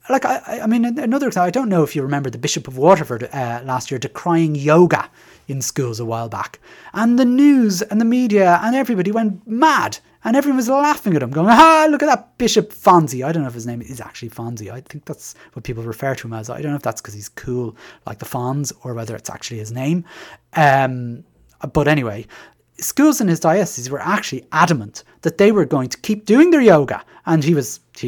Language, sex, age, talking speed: English, male, 30-49, 230 wpm